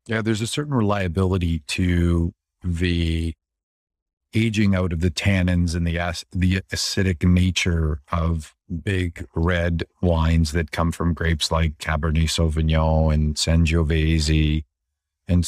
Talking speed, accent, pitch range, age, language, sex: 125 wpm, American, 85-105 Hz, 50-69, English, male